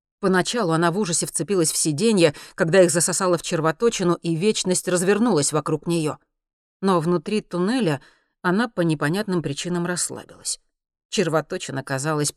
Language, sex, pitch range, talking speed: Russian, female, 150-180 Hz, 130 wpm